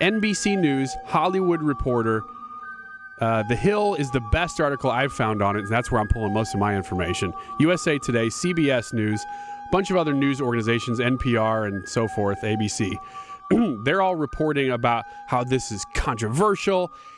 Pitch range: 115-185 Hz